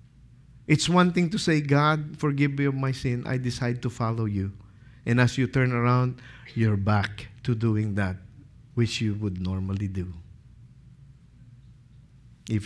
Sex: male